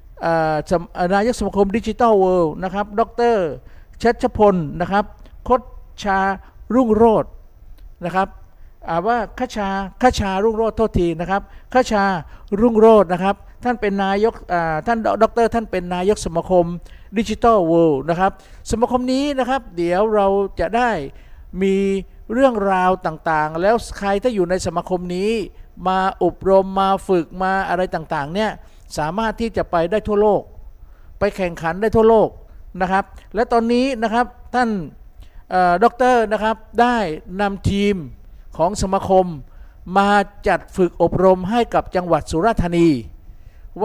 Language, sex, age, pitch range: Thai, male, 60-79, 170-220 Hz